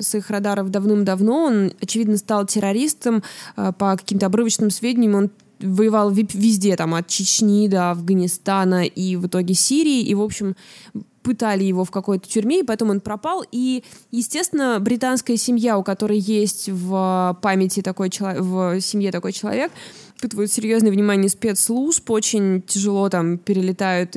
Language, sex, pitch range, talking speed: Russian, female, 195-250 Hz, 145 wpm